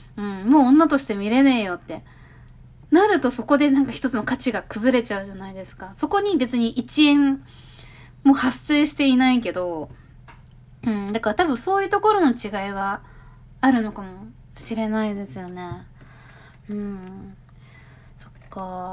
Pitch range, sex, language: 175-260 Hz, female, Japanese